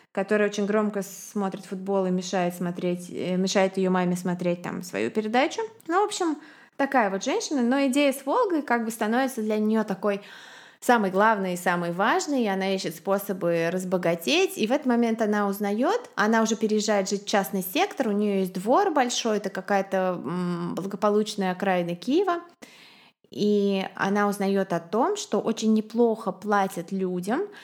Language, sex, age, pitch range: Russian, female, 20-39, 195-265 Hz